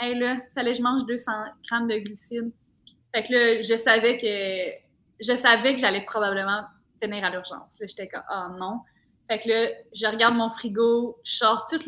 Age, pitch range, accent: 20-39, 210-240 Hz, Canadian